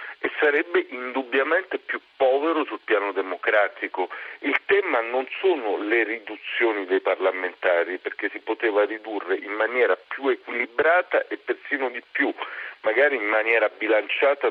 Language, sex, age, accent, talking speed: Italian, male, 40-59, native, 130 wpm